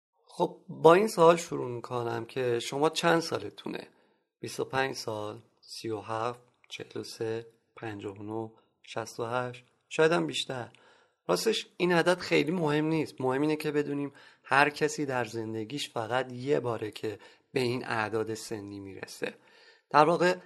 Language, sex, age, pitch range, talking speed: Persian, male, 30-49, 115-160 Hz, 130 wpm